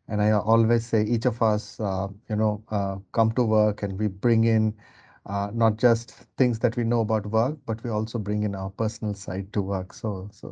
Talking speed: 220 wpm